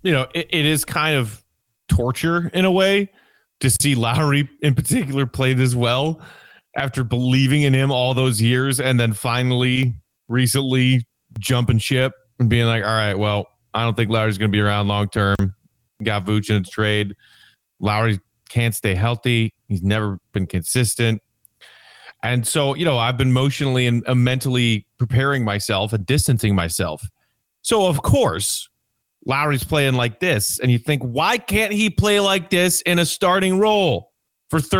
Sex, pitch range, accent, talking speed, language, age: male, 115-175 Hz, American, 165 wpm, English, 30-49